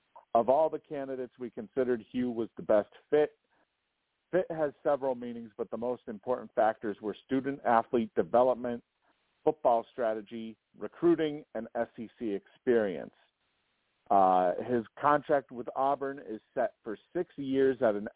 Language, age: English, 50-69